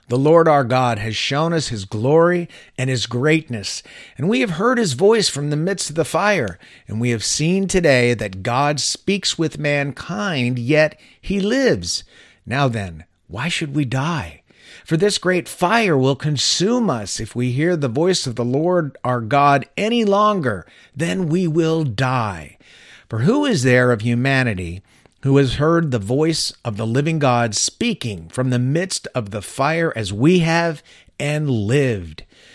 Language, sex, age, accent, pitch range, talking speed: English, male, 50-69, American, 120-165 Hz, 170 wpm